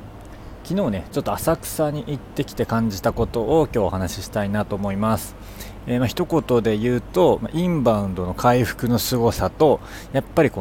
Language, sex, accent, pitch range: Japanese, male, native, 100-125 Hz